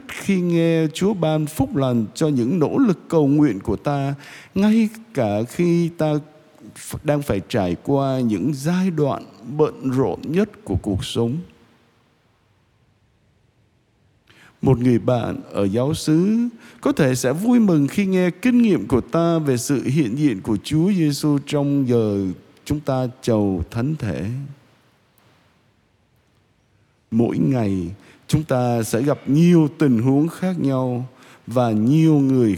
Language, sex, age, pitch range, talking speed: Vietnamese, male, 60-79, 115-160 Hz, 140 wpm